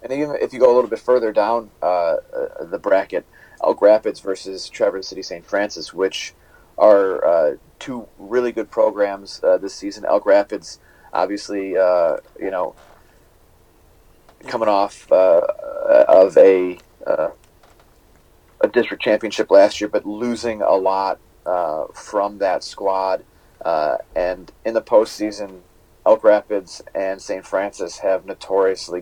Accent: American